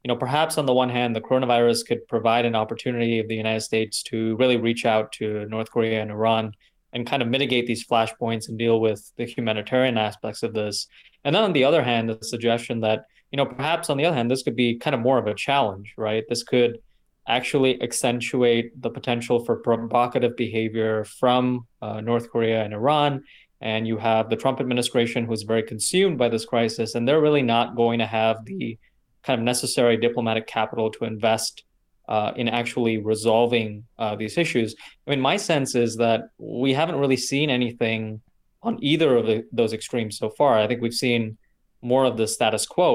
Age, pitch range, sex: 20-39, 110-130 Hz, male